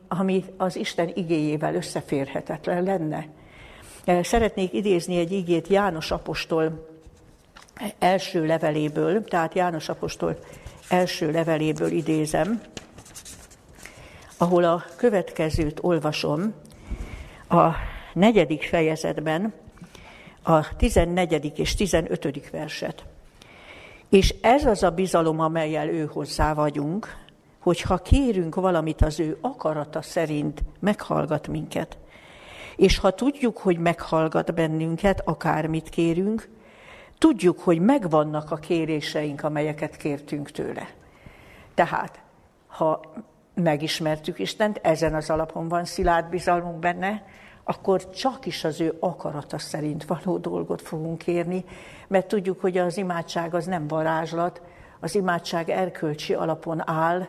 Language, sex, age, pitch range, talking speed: Hungarian, female, 60-79, 155-185 Hz, 105 wpm